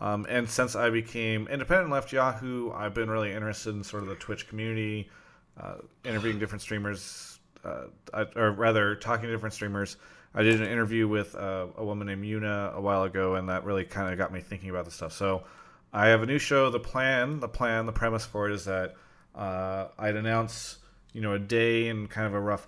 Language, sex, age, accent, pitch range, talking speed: English, male, 30-49, American, 105-120 Hz, 215 wpm